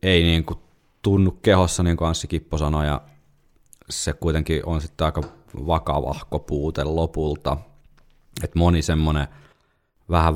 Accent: native